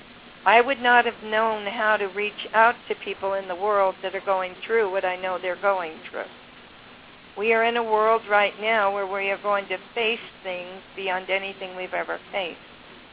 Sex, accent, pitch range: female, American, 195-225 Hz